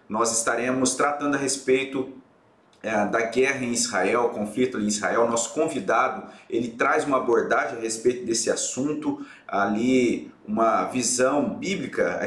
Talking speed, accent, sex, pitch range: 140 wpm, Brazilian, male, 120-145 Hz